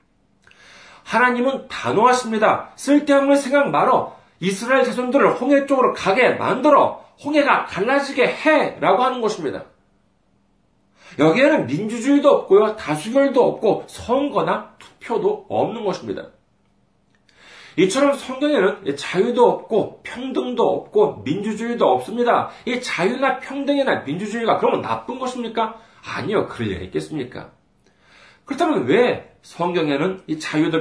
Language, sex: Korean, male